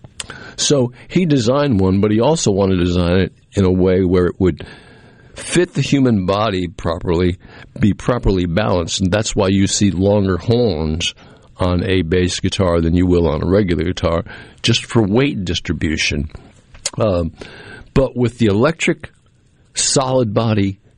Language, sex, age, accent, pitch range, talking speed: English, male, 60-79, American, 90-115 Hz, 155 wpm